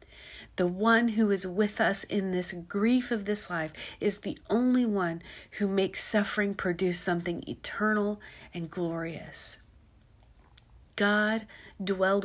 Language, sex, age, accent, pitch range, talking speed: English, female, 40-59, American, 170-210 Hz, 125 wpm